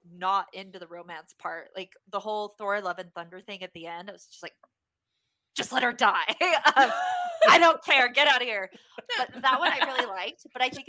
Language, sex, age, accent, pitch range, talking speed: English, female, 20-39, American, 185-245 Hz, 225 wpm